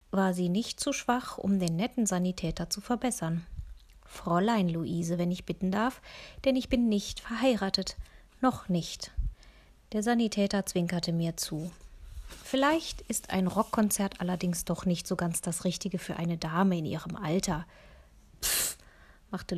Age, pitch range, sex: 30-49, 175-210 Hz, female